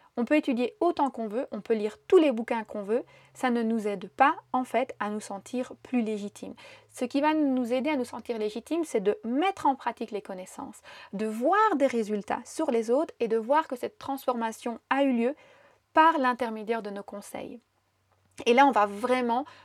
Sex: female